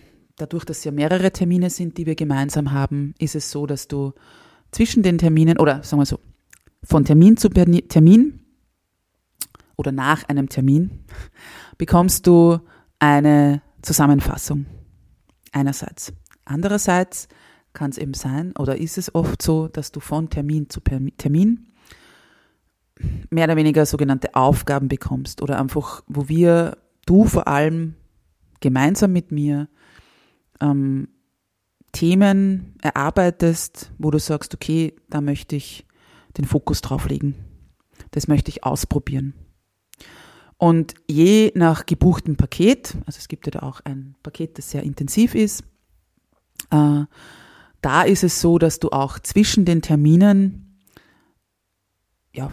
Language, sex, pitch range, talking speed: German, female, 140-170 Hz, 130 wpm